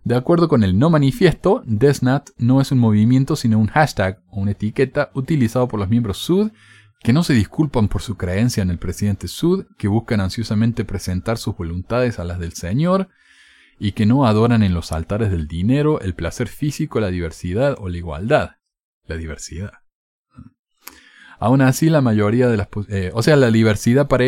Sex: male